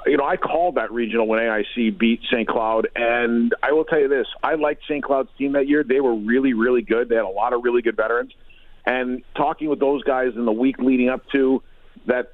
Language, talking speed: English, 240 wpm